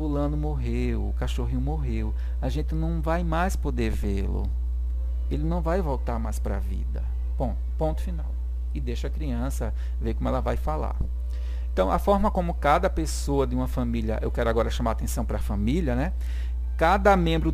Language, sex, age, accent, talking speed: English, male, 50-69, Brazilian, 185 wpm